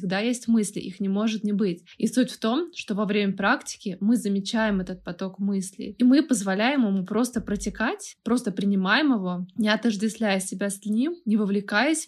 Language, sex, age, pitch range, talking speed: Russian, female, 20-39, 195-240 Hz, 185 wpm